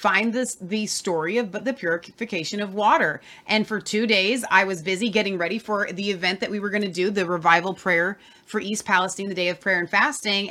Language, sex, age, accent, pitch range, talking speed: English, female, 30-49, American, 190-255 Hz, 225 wpm